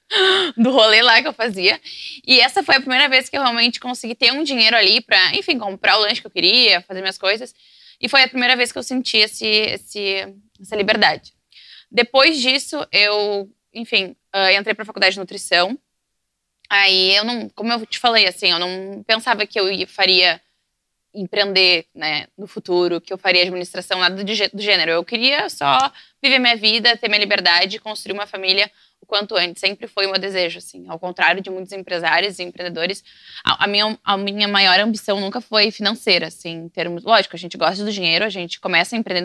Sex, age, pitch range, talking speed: female, 10-29, 185-230 Hz, 195 wpm